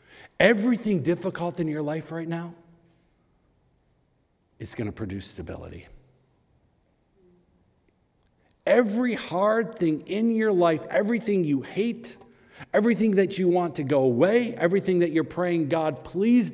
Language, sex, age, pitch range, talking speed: English, male, 50-69, 110-170 Hz, 125 wpm